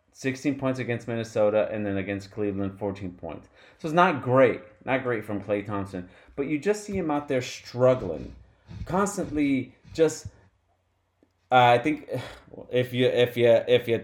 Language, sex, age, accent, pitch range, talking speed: English, male, 30-49, American, 100-125 Hz, 165 wpm